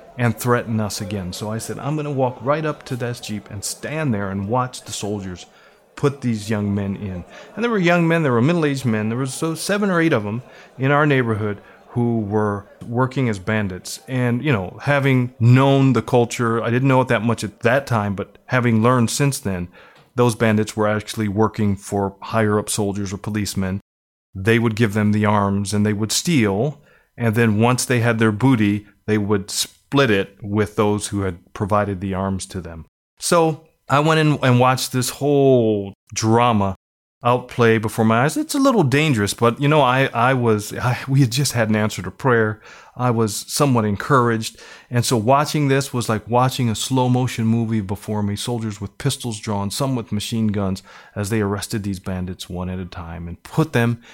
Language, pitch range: English, 105-130 Hz